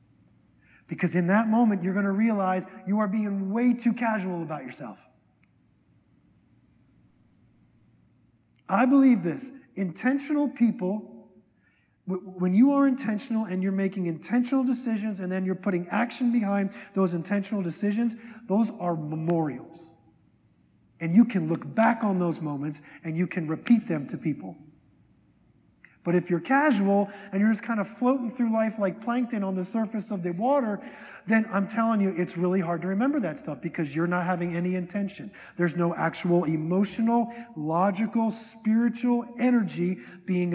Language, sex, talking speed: English, male, 150 wpm